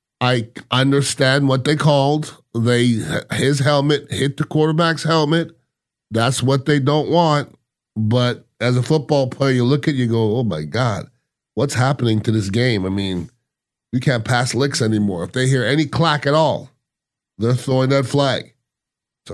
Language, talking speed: English, 170 wpm